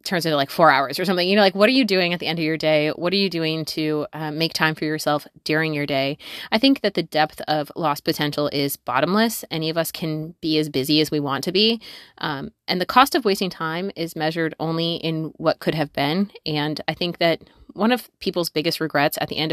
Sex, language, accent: female, English, American